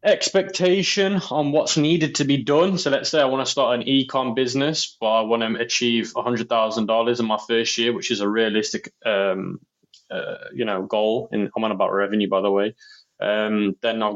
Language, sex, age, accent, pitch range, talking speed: English, male, 20-39, British, 105-125 Hz, 210 wpm